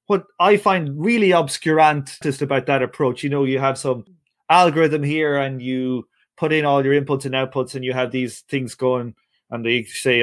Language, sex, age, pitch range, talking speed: English, male, 30-49, 125-155 Hz, 195 wpm